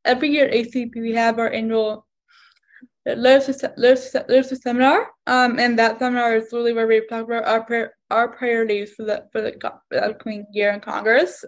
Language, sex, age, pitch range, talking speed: English, female, 10-29, 225-255 Hz, 165 wpm